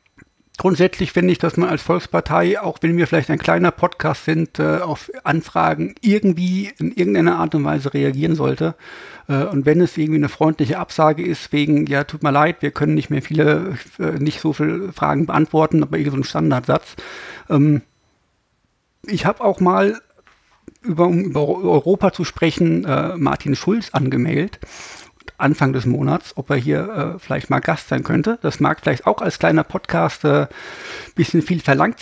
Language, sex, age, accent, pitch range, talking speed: German, male, 50-69, German, 150-185 Hz, 165 wpm